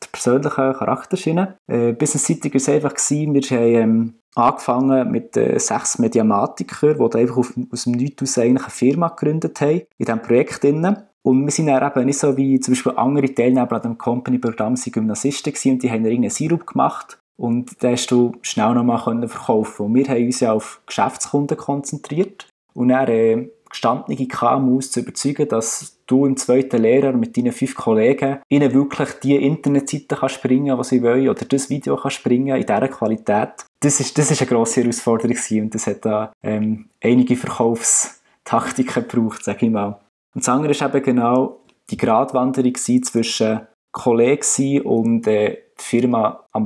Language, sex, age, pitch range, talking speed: German, male, 20-39, 115-140 Hz, 175 wpm